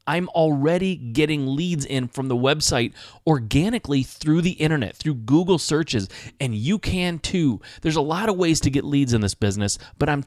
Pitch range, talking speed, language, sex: 115-155 Hz, 185 wpm, English, male